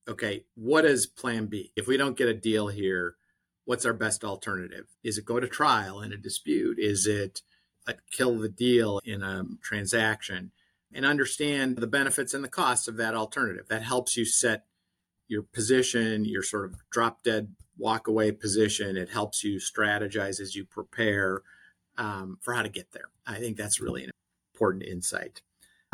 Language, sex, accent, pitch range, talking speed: English, male, American, 105-120 Hz, 175 wpm